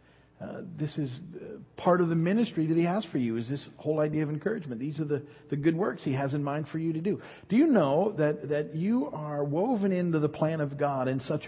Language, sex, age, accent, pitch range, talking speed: English, male, 50-69, American, 130-160 Hz, 245 wpm